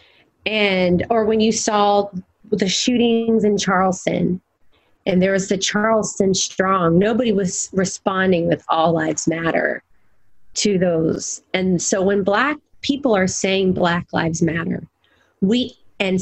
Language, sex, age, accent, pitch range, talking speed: English, female, 30-49, American, 175-215 Hz, 135 wpm